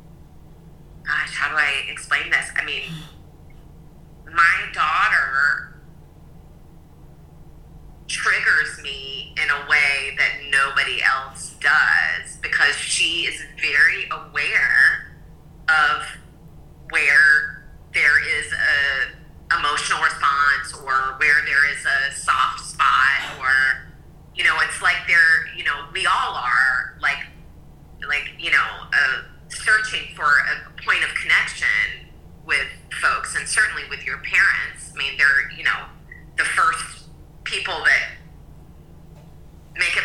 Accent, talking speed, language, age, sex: American, 115 wpm, English, 30-49, female